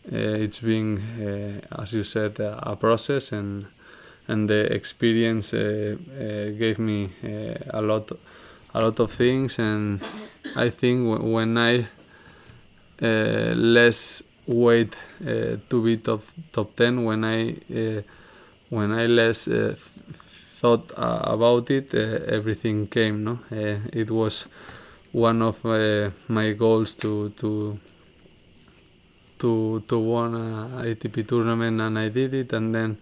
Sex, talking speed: male, 140 wpm